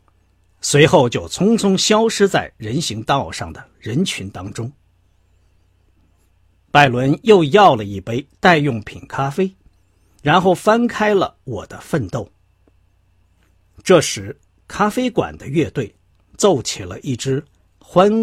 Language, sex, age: Chinese, male, 50-69